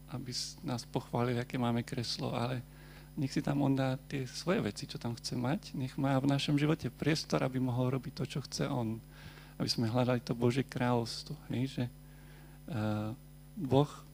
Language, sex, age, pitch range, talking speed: Slovak, male, 40-59, 125-145 Hz, 170 wpm